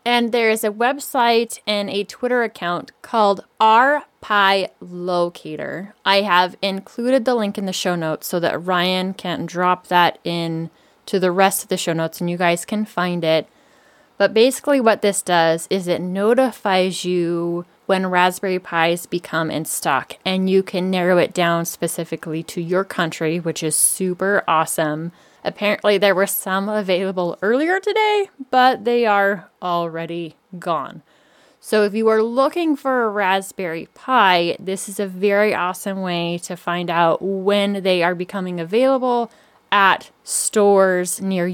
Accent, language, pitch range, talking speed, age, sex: American, English, 175-215 Hz, 155 wpm, 20-39, female